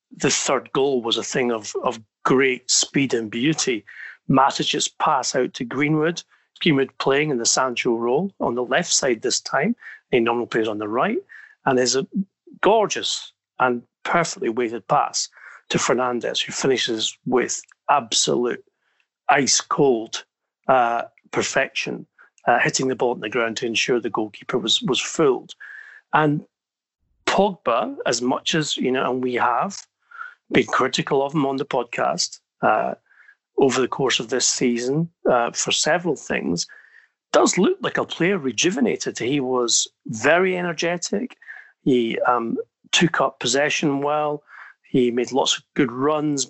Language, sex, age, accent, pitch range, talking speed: English, male, 40-59, British, 125-195 Hz, 150 wpm